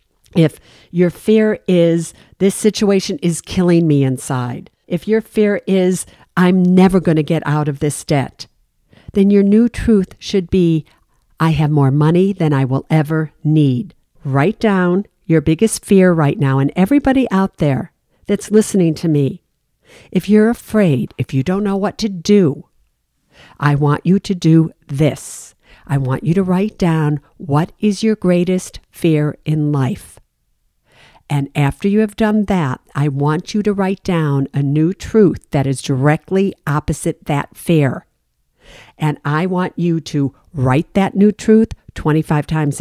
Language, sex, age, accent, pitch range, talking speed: English, female, 50-69, American, 150-190 Hz, 160 wpm